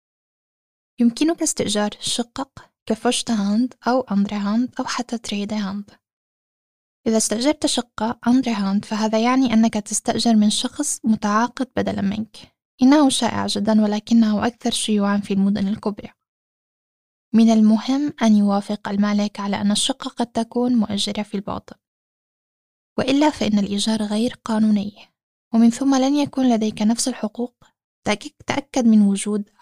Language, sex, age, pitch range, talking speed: Arabic, female, 10-29, 210-245 Hz, 130 wpm